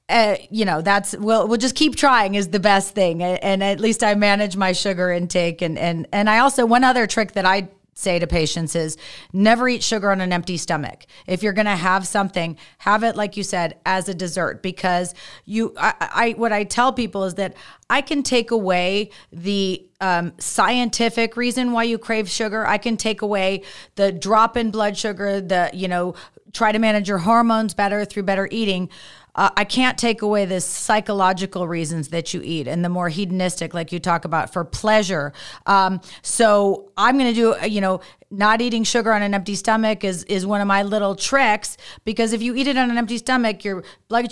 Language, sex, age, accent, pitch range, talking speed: English, female, 30-49, American, 185-220 Hz, 210 wpm